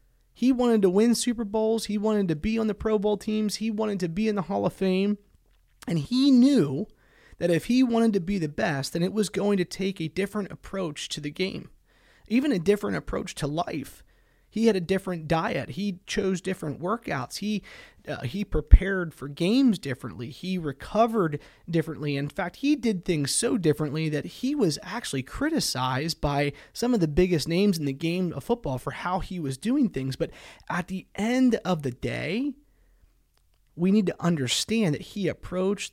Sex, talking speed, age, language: male, 190 wpm, 30-49, English